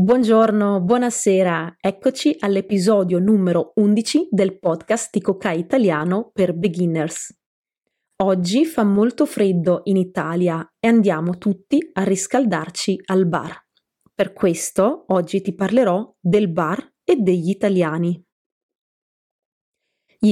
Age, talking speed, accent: 20-39, 105 wpm, Italian